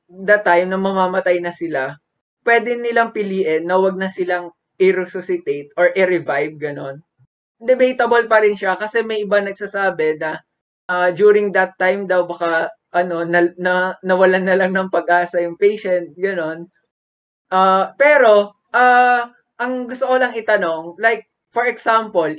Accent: native